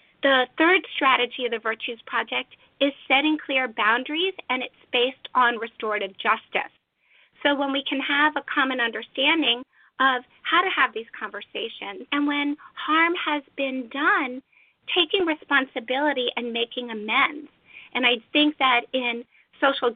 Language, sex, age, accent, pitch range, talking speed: English, female, 40-59, American, 245-300 Hz, 145 wpm